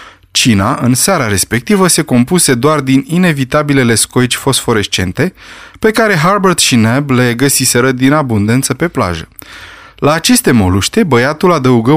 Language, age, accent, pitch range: Romanian, 20-39, native, 115-165 Hz